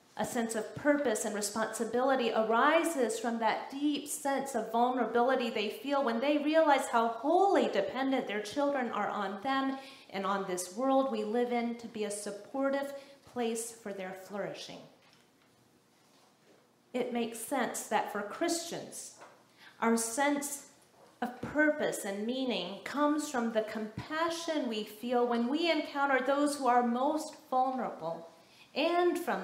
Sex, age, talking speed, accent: female, 40-59, 140 wpm, American